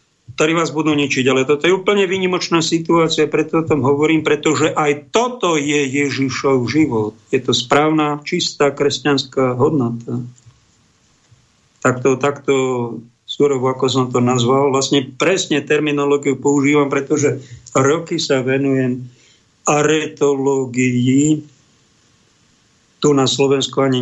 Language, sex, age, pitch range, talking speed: Slovak, male, 50-69, 120-150 Hz, 110 wpm